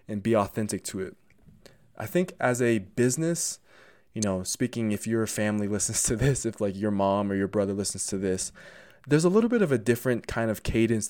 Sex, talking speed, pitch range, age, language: male, 210 wpm, 105-135 Hz, 20-39, English